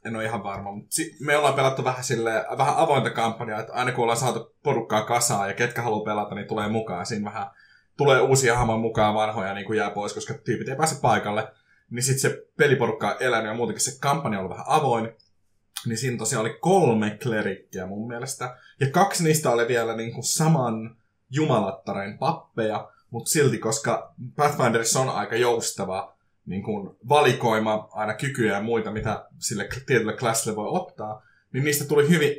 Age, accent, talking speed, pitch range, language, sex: 20-39, native, 180 wpm, 105-135 Hz, Finnish, male